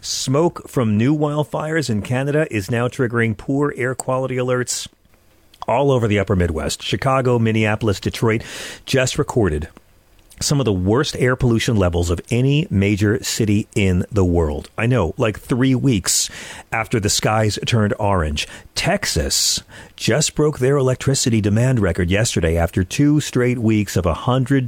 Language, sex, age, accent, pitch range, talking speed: English, male, 40-59, American, 95-125 Hz, 150 wpm